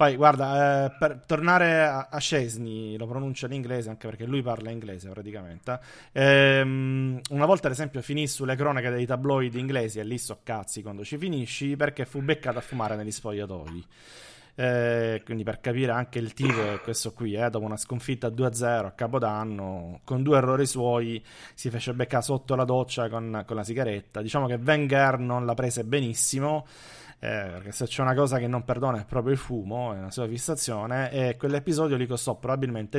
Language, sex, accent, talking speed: Italian, male, native, 190 wpm